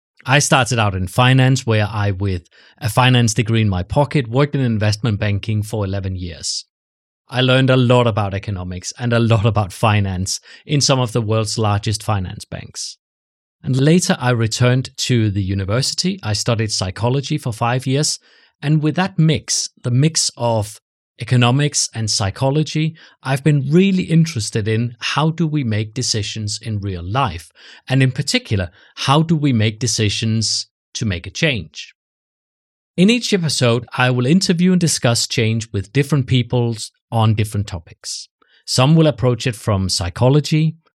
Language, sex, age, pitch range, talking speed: English, male, 30-49, 110-145 Hz, 160 wpm